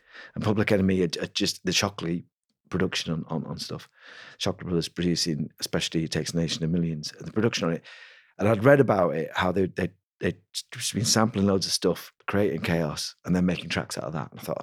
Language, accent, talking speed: English, British, 220 wpm